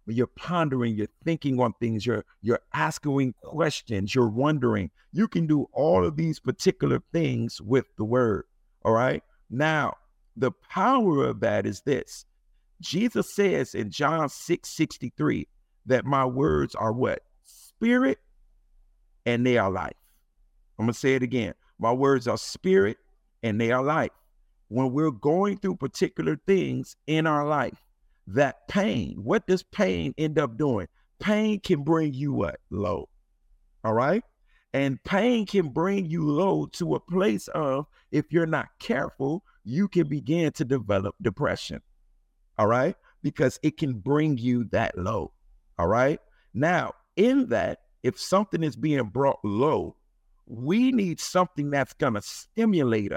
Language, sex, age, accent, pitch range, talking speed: English, male, 50-69, American, 120-165 Hz, 150 wpm